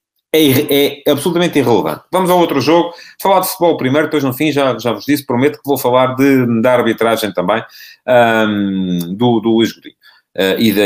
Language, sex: Portuguese, male